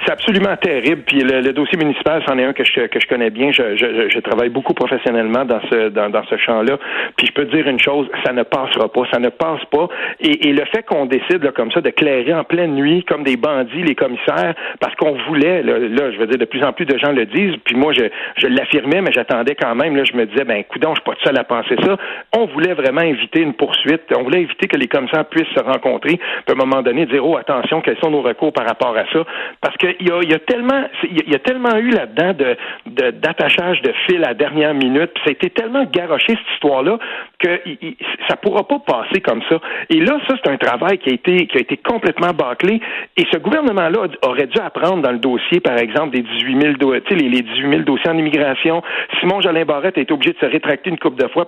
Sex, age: male, 60-79